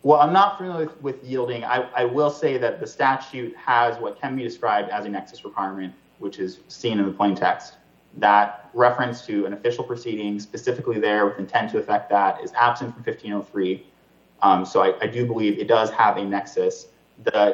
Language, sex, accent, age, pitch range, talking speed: English, male, American, 30-49, 100-125 Hz, 200 wpm